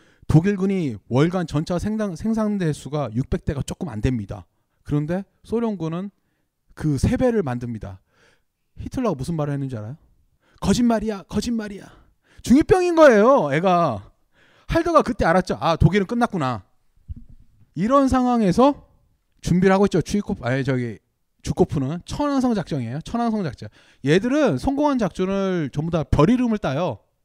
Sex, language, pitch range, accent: male, Korean, 125-205 Hz, native